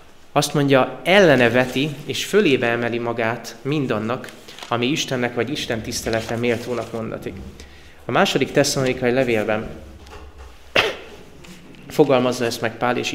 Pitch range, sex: 115-140 Hz, male